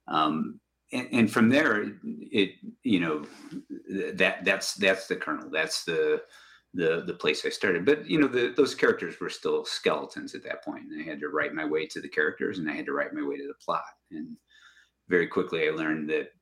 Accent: American